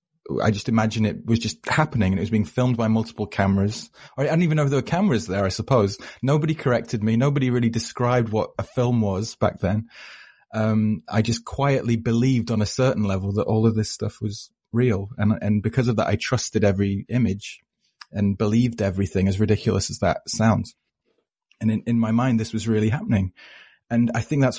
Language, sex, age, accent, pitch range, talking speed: English, male, 30-49, British, 105-120 Hz, 205 wpm